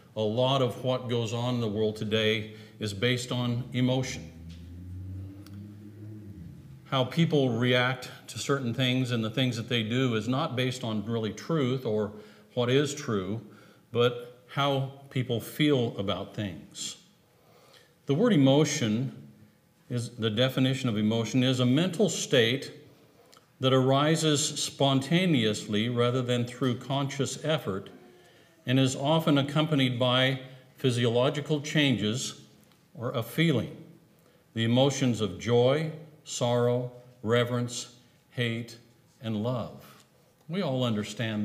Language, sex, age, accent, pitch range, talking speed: English, male, 50-69, American, 115-140 Hz, 120 wpm